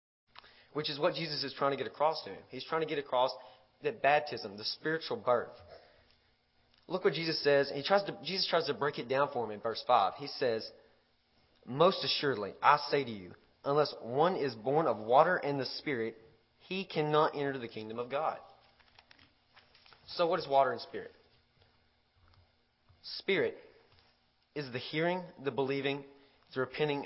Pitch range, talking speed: 120-150 Hz, 175 wpm